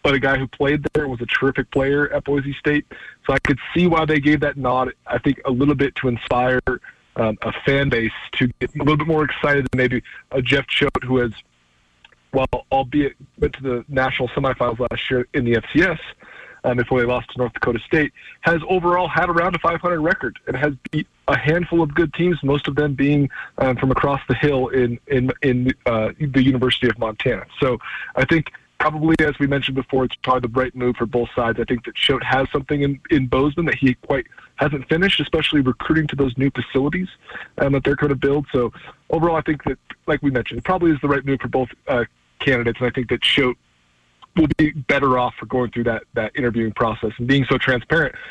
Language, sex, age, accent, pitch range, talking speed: English, male, 20-39, American, 125-150 Hz, 225 wpm